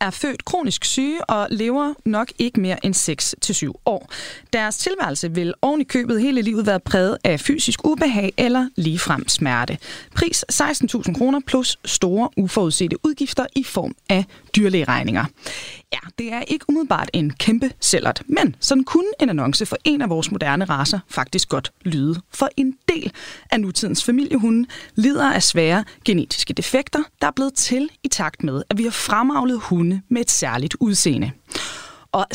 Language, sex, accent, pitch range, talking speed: Danish, female, native, 180-275 Hz, 165 wpm